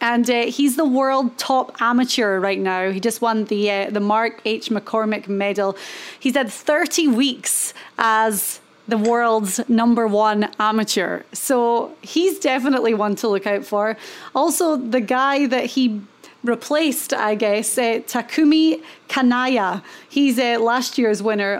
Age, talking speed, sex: 30-49, 145 wpm, female